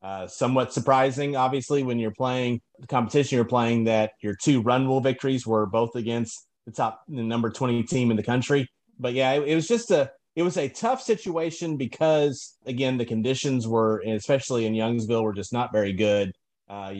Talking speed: 195 wpm